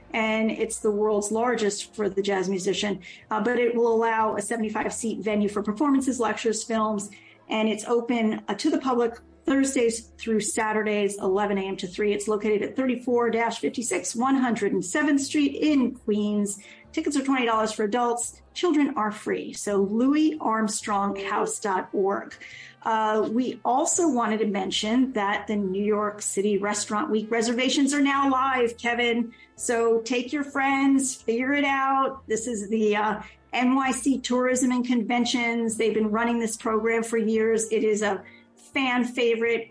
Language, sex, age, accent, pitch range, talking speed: English, female, 40-59, American, 215-245 Hz, 150 wpm